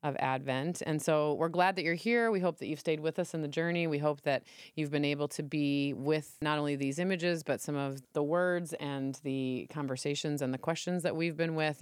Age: 30-49